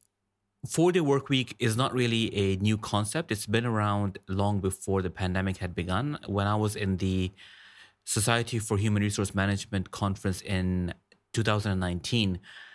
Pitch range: 95-110 Hz